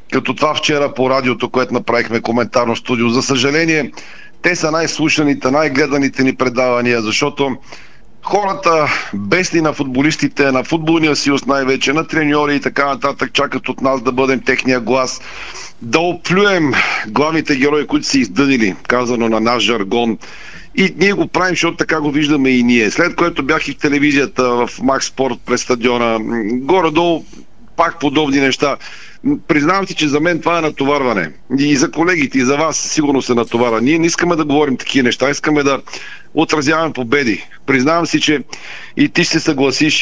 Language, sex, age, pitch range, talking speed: Bulgarian, male, 40-59, 130-155 Hz, 160 wpm